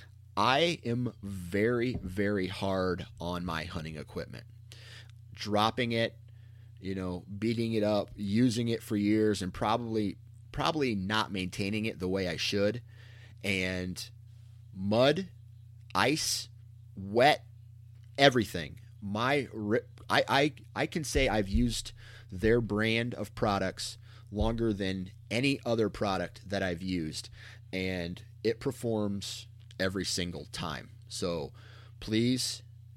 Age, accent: 30-49, American